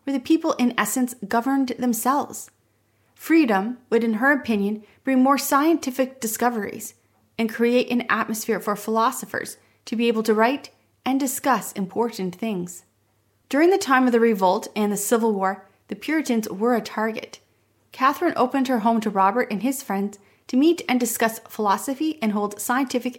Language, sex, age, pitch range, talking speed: English, female, 30-49, 200-255 Hz, 160 wpm